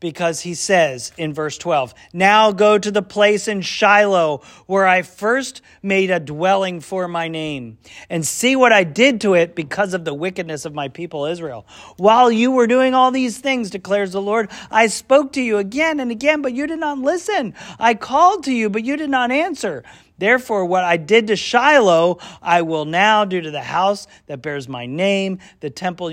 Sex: male